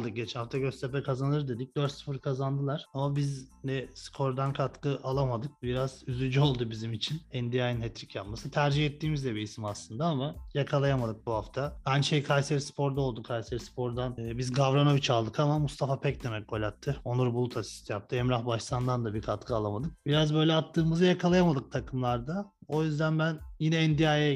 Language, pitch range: Turkish, 125-155 Hz